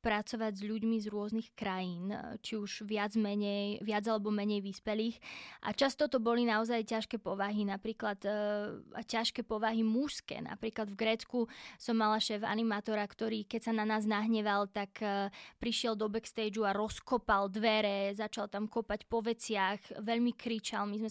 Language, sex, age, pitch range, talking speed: Slovak, female, 20-39, 210-230 Hz, 160 wpm